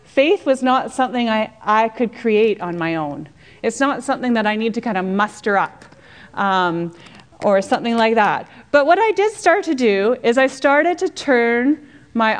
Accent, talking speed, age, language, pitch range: American, 195 wpm, 30-49, English, 190-265 Hz